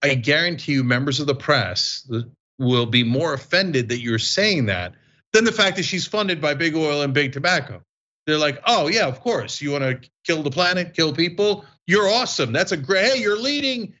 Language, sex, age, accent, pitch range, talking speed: English, male, 40-59, American, 125-185 Hz, 210 wpm